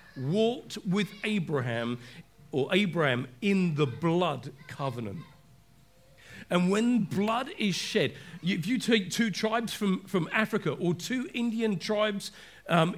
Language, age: English, 40-59